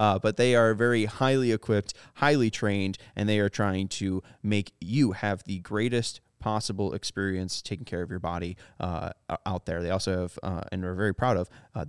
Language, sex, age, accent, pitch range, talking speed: English, male, 20-39, American, 100-125 Hz, 195 wpm